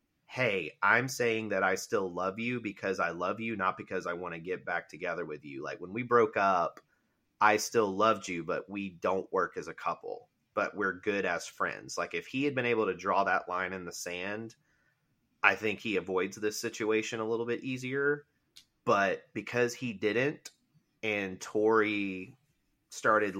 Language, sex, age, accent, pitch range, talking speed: English, male, 30-49, American, 95-115 Hz, 185 wpm